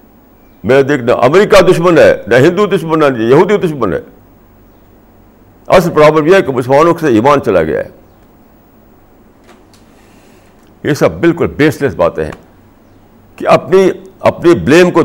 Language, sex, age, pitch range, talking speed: Urdu, male, 60-79, 110-165 Hz, 145 wpm